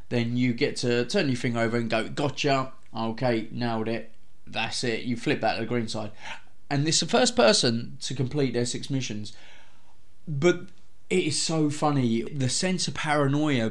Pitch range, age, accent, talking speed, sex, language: 115-145 Hz, 20-39, British, 190 wpm, male, English